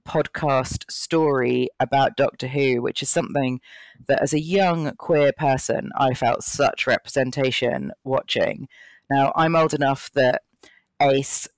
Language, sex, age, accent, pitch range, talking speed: English, female, 30-49, British, 130-165 Hz, 130 wpm